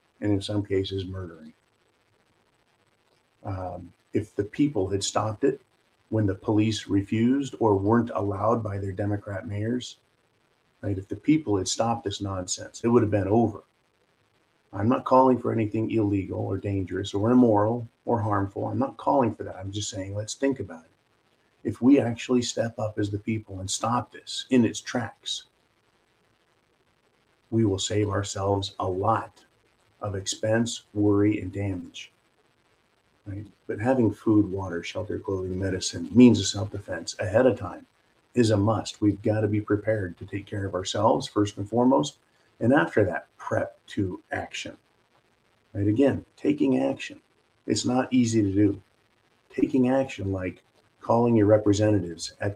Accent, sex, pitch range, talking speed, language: American, male, 100-115 Hz, 155 wpm, English